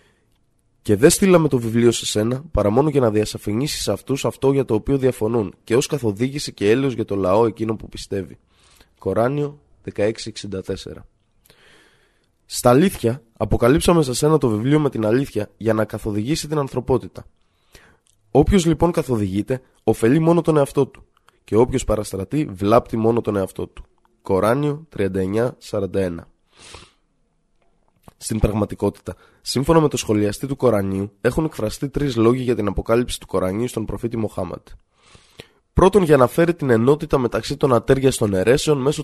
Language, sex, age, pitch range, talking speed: Greek, male, 20-39, 105-140 Hz, 150 wpm